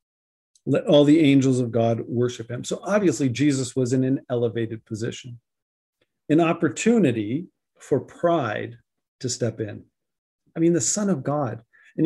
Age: 50-69